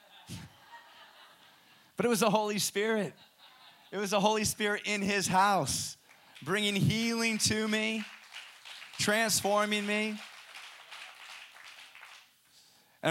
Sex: male